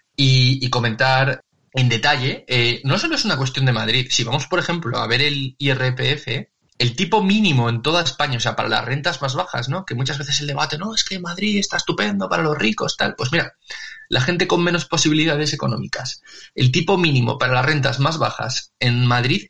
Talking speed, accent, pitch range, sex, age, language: 210 wpm, Spanish, 120-155 Hz, male, 20-39, Spanish